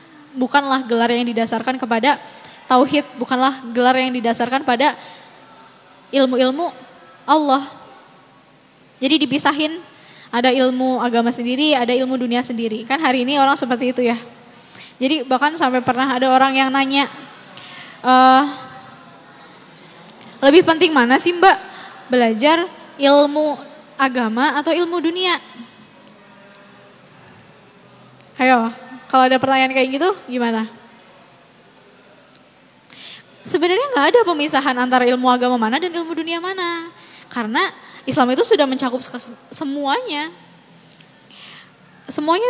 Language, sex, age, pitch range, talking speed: Indonesian, female, 10-29, 250-300 Hz, 105 wpm